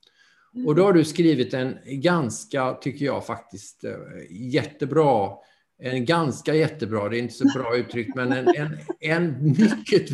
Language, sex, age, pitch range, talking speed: English, male, 50-69, 115-145 Hz, 140 wpm